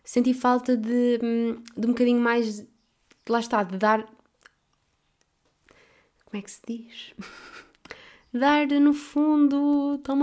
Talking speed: 115 wpm